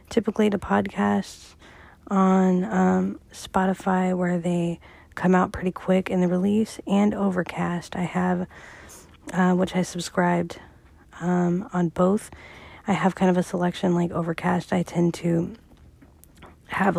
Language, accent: English, American